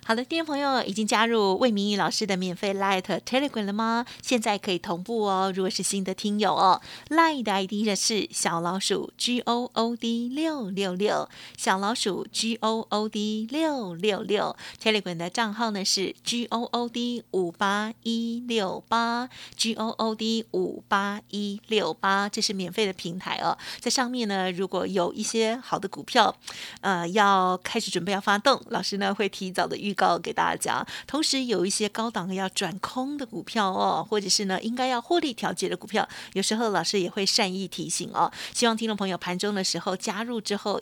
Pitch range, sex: 195-235 Hz, female